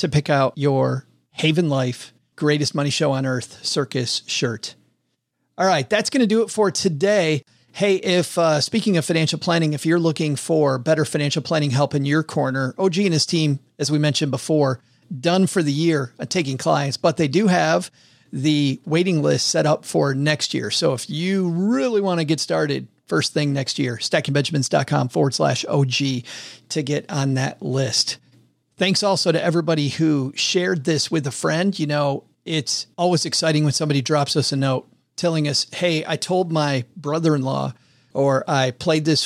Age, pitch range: 40-59, 135-160 Hz